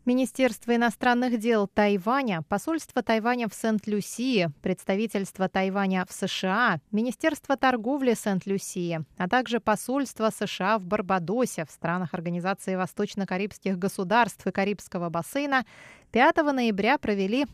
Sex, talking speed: female, 110 wpm